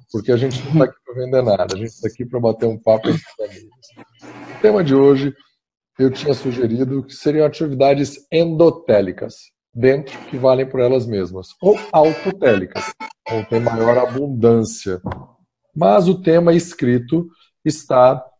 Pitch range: 110-155 Hz